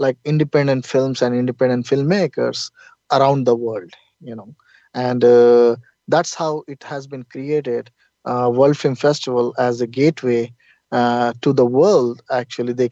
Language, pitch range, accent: English, 125-140 Hz, Indian